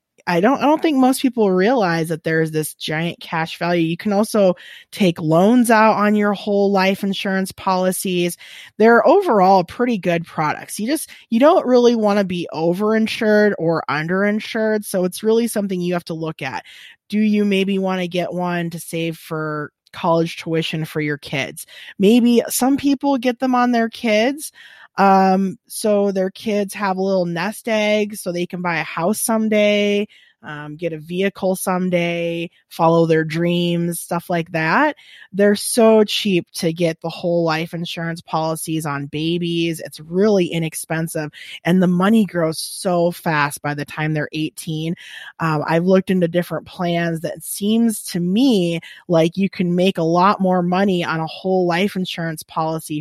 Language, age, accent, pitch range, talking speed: English, 20-39, American, 165-210 Hz, 170 wpm